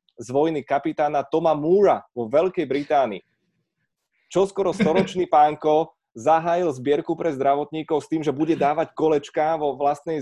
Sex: male